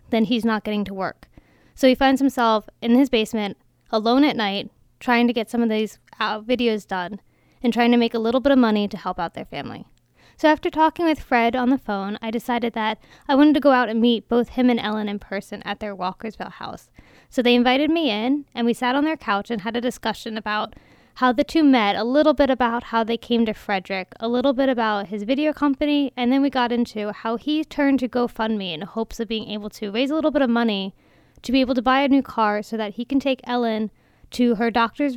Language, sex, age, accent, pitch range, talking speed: English, female, 20-39, American, 215-255 Hz, 240 wpm